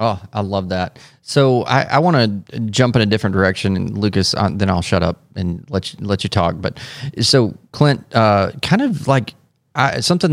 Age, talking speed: 30-49, 205 wpm